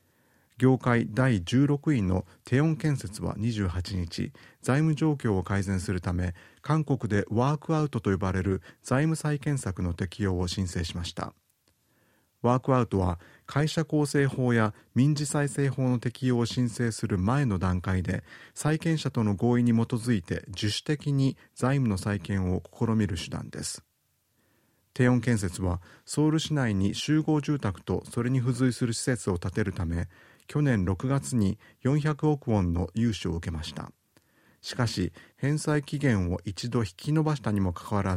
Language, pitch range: Japanese, 95-130 Hz